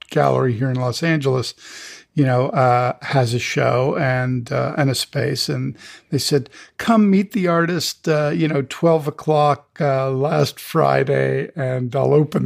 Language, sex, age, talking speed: English, male, 50-69, 160 wpm